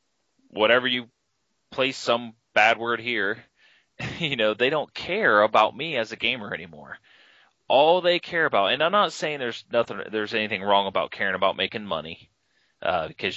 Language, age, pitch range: English, 20-39, 95-120 Hz